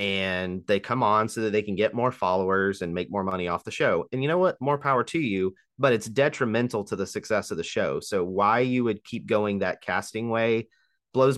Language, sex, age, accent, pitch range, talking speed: English, male, 30-49, American, 100-135 Hz, 235 wpm